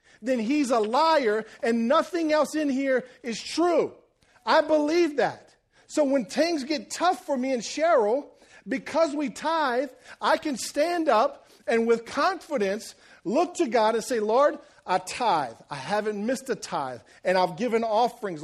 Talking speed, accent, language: 165 wpm, American, English